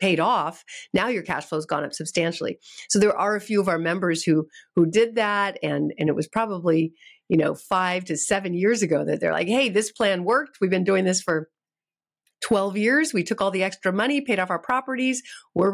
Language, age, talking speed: English, 50-69, 220 wpm